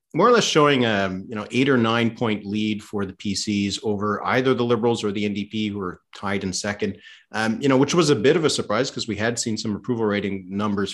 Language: English